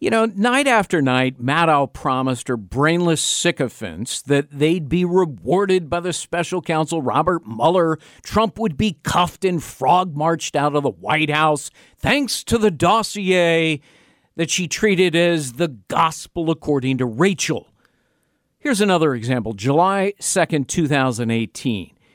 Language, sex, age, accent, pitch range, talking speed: English, male, 50-69, American, 135-180 Hz, 140 wpm